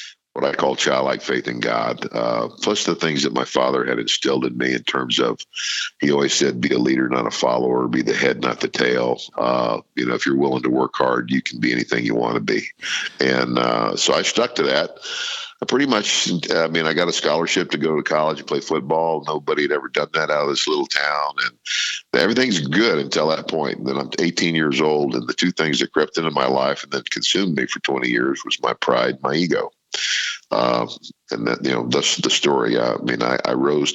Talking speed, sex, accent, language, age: 235 wpm, male, American, English, 50-69